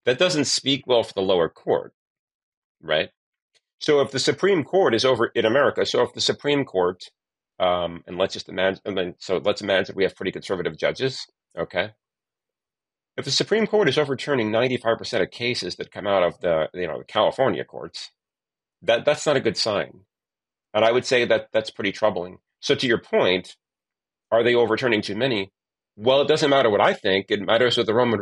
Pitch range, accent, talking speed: 95-130 Hz, American, 200 wpm